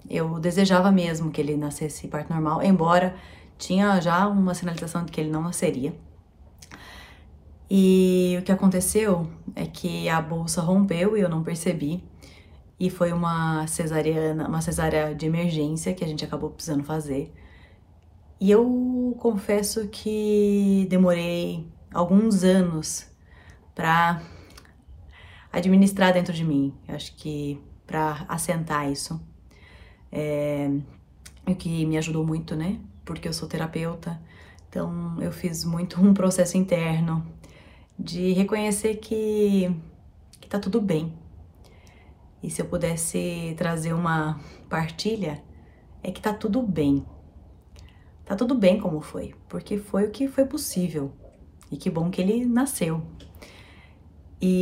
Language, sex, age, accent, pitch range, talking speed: Portuguese, female, 30-49, Brazilian, 135-185 Hz, 125 wpm